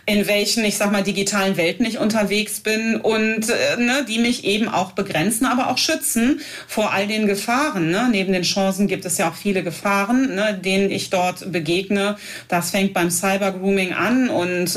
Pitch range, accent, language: 185-225 Hz, German, German